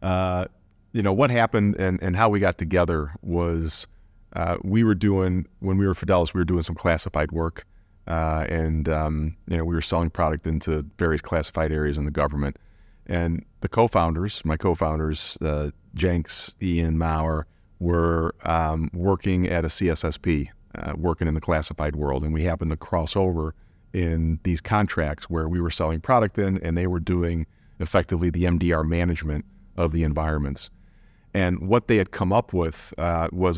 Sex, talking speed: male, 175 wpm